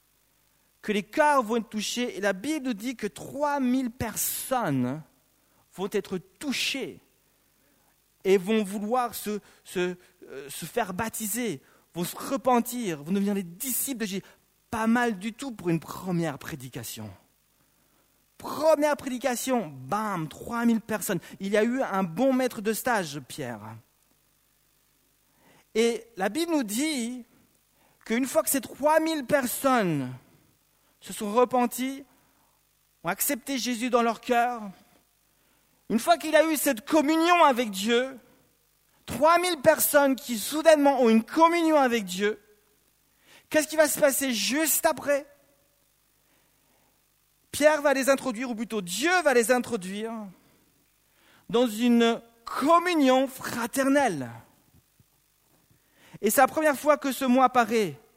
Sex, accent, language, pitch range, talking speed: male, French, French, 195-270 Hz, 130 wpm